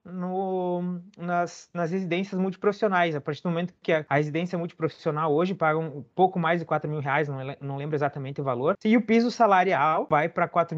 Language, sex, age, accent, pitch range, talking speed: Portuguese, male, 20-39, Brazilian, 155-195 Hz, 200 wpm